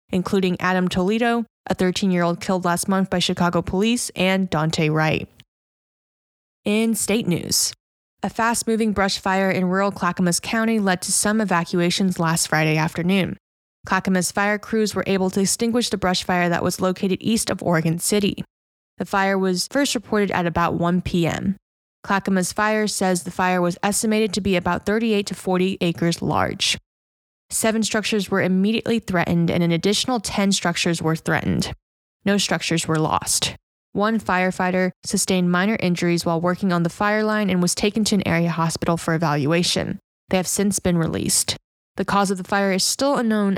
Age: 10-29